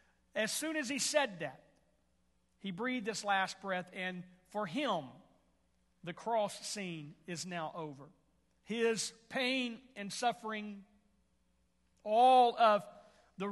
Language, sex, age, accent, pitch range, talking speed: English, male, 50-69, American, 185-240 Hz, 120 wpm